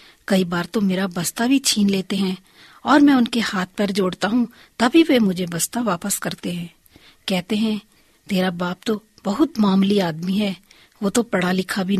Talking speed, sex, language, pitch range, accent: 180 wpm, female, Hindi, 195-265 Hz, native